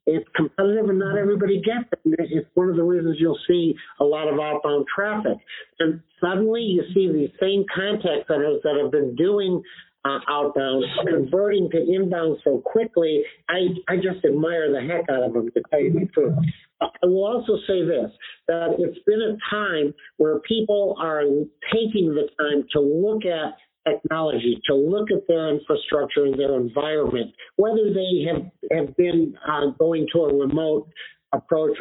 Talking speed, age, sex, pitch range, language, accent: 170 wpm, 50-69, male, 145-190 Hz, English, American